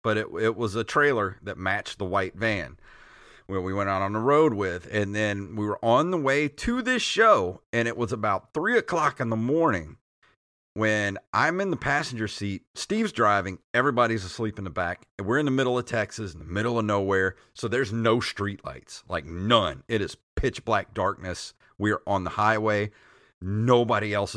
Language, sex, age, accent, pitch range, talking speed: English, male, 40-59, American, 100-125 Hz, 205 wpm